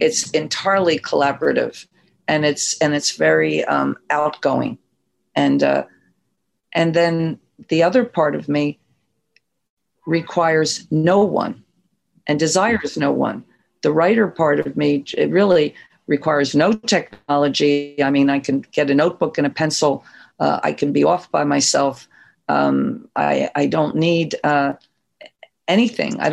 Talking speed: 140 wpm